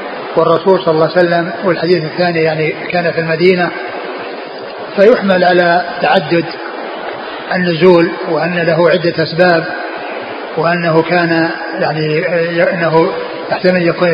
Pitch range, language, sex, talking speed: 165-180 Hz, Arabic, male, 110 wpm